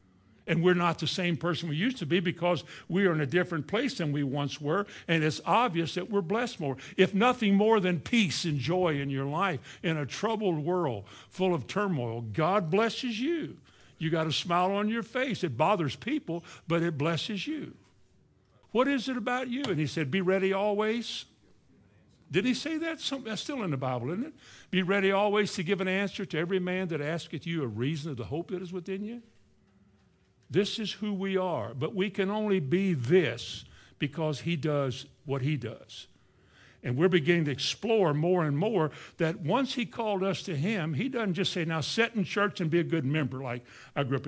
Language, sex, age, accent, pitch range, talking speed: English, male, 60-79, American, 135-195 Hz, 210 wpm